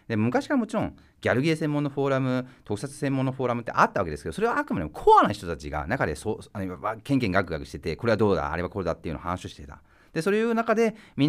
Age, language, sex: 40-59, Japanese, male